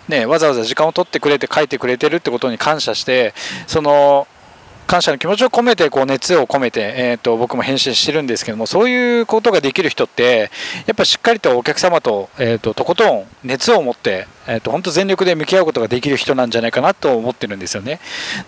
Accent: native